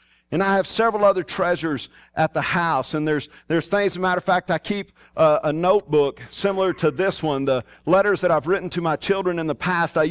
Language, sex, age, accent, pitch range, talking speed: English, male, 40-59, American, 150-200 Hz, 230 wpm